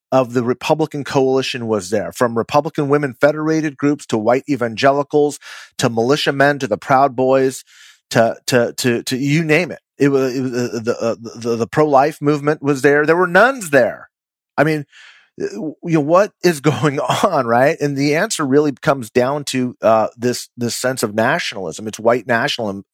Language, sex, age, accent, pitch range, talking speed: English, male, 30-49, American, 115-145 Hz, 190 wpm